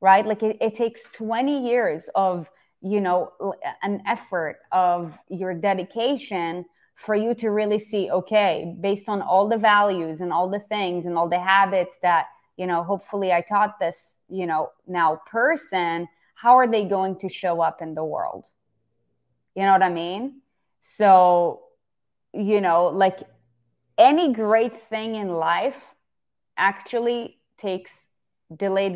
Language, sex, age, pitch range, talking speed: English, female, 20-39, 180-225 Hz, 150 wpm